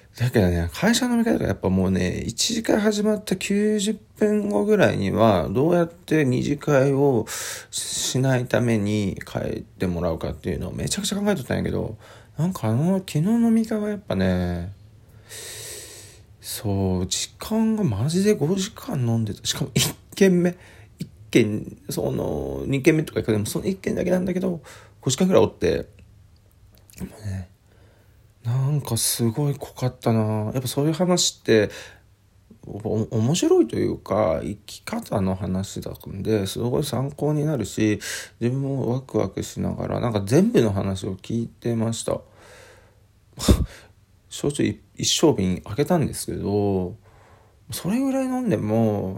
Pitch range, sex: 100-150 Hz, male